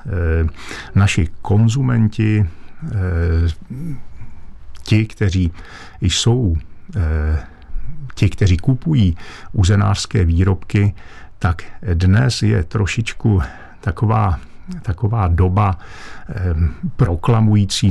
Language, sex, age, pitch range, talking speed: Czech, male, 50-69, 85-105 Hz, 60 wpm